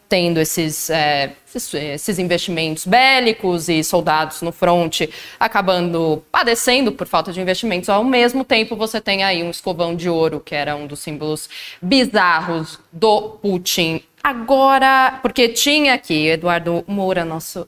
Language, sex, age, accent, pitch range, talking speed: Portuguese, female, 20-39, Brazilian, 160-225 Hz, 140 wpm